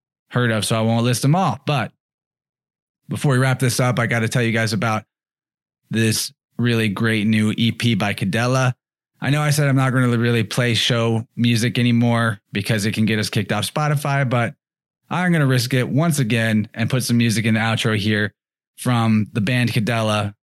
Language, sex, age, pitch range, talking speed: English, male, 20-39, 110-130 Hz, 205 wpm